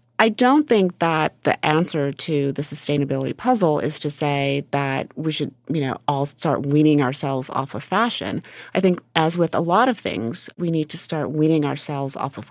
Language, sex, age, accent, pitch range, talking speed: English, female, 30-49, American, 140-165 Hz, 195 wpm